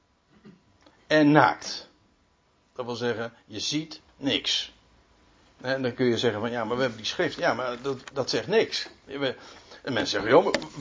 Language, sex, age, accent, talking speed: Dutch, male, 60-79, Dutch, 170 wpm